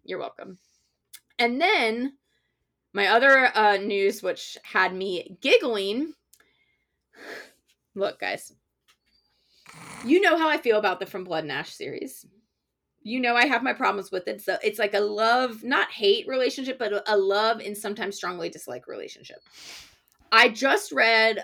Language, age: English, 20-39